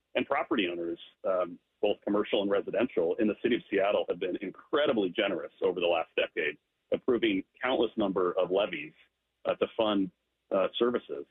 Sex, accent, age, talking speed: male, American, 40-59, 165 wpm